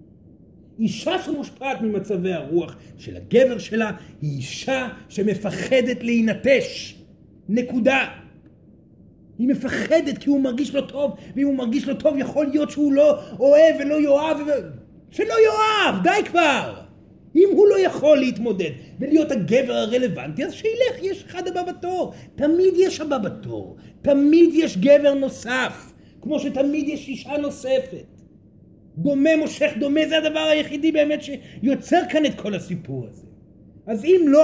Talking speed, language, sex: 140 wpm, Hebrew, male